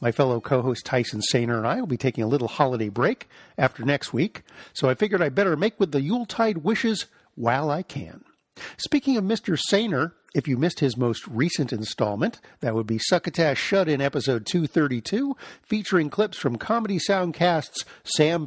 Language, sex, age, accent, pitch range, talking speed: English, male, 50-69, American, 130-190 Hz, 180 wpm